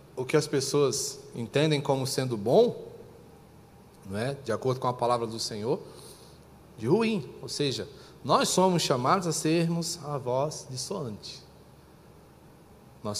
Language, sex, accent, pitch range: Portuguese, male, Brazilian, 120-160 Hz